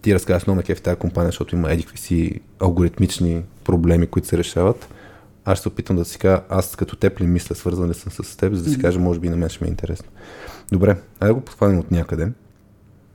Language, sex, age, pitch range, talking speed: Bulgarian, male, 20-39, 85-105 Hz, 210 wpm